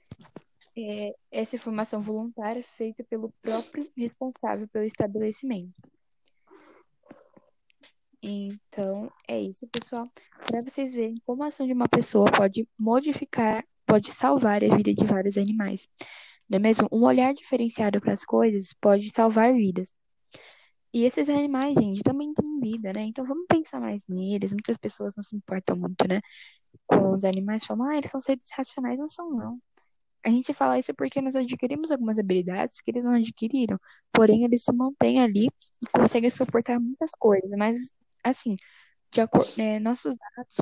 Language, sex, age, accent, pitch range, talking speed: Portuguese, female, 10-29, Brazilian, 205-255 Hz, 155 wpm